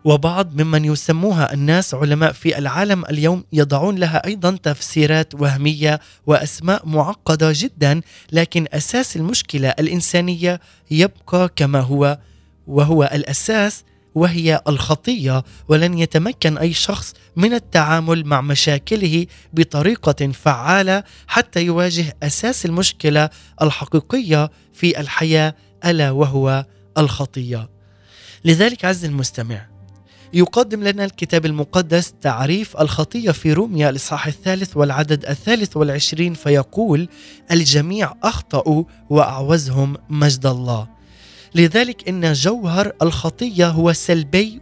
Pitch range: 145-175 Hz